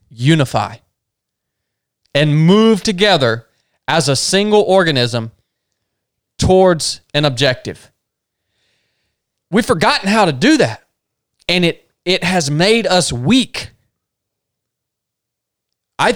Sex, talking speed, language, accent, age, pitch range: male, 95 wpm, English, American, 30-49, 135-225 Hz